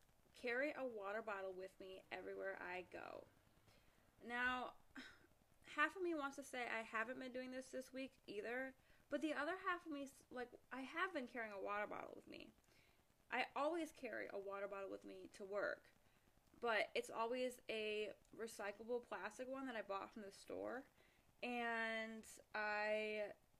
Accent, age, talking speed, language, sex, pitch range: American, 20-39, 165 wpm, English, female, 205-255 Hz